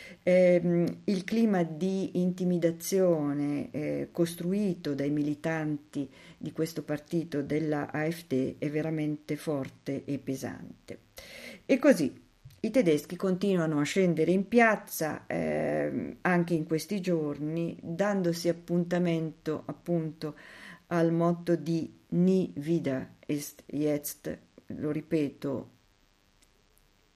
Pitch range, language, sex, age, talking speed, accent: 140-170 Hz, Italian, female, 50-69, 100 wpm, native